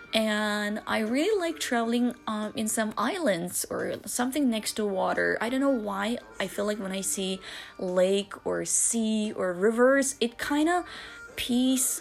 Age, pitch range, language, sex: 20-39, 185-250 Hz, Chinese, female